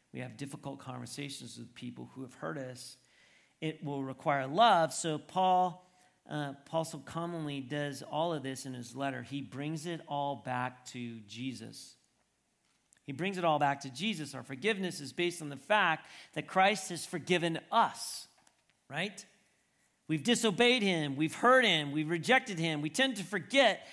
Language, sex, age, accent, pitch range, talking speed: English, male, 40-59, American, 145-225 Hz, 170 wpm